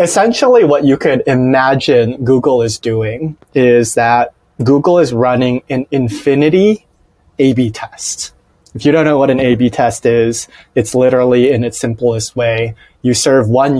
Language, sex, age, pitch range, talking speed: English, male, 30-49, 120-140 Hz, 150 wpm